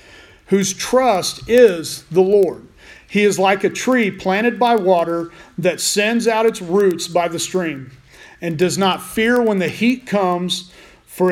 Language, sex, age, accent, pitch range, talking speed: English, male, 40-59, American, 150-195 Hz, 160 wpm